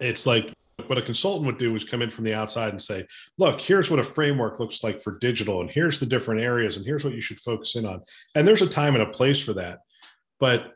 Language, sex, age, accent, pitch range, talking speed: English, male, 40-59, American, 110-135 Hz, 260 wpm